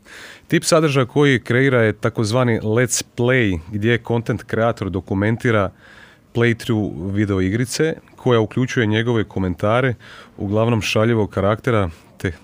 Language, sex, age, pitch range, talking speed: Croatian, male, 30-49, 95-120 Hz, 110 wpm